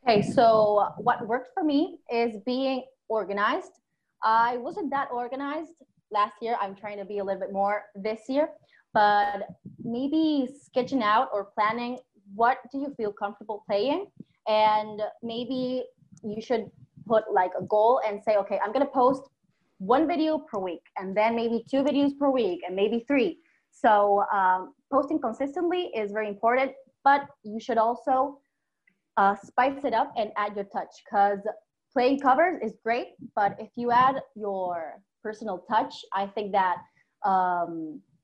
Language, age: English, 20-39